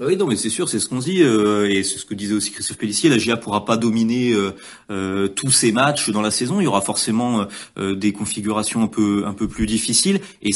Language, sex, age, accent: French, male, 30-49, French